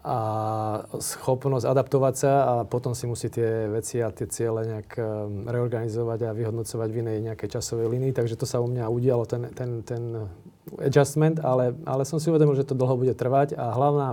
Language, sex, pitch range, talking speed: Slovak, male, 120-130 Hz, 185 wpm